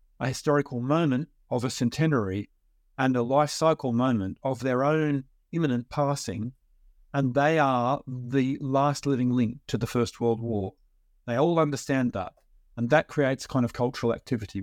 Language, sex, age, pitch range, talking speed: English, male, 50-69, 120-145 Hz, 160 wpm